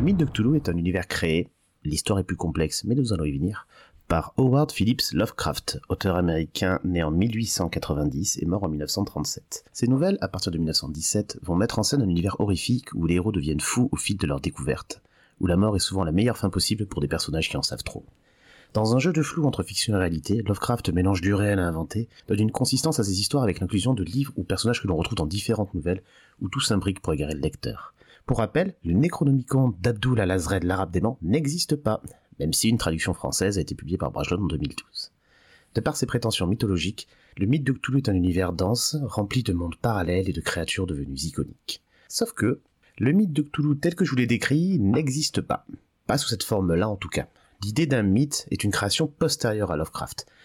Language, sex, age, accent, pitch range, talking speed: French, male, 30-49, French, 90-125 Hz, 220 wpm